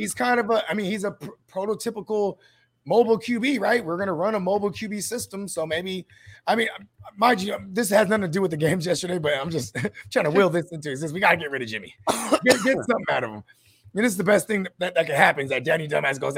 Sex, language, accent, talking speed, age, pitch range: male, English, American, 270 wpm, 20-39, 160-225 Hz